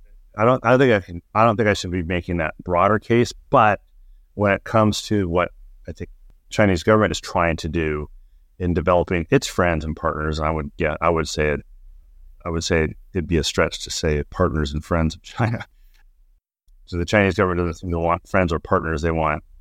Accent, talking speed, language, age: American, 215 wpm, English, 30-49